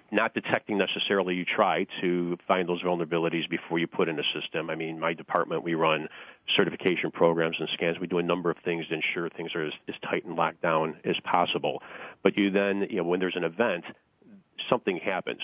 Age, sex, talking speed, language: 40-59, male, 210 wpm, English